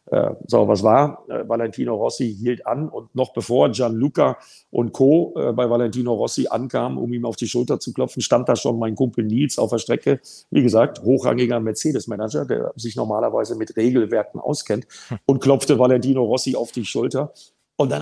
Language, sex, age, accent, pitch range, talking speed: German, male, 50-69, German, 120-145 Hz, 175 wpm